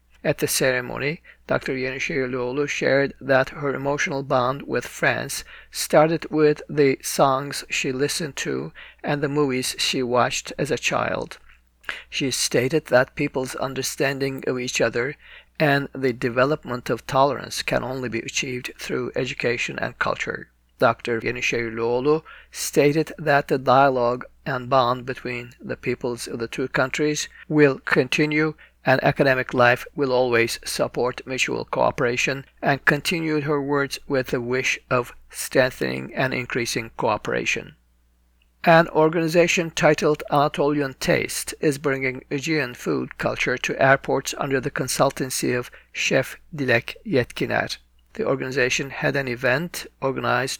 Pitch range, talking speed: 125-150 Hz, 135 wpm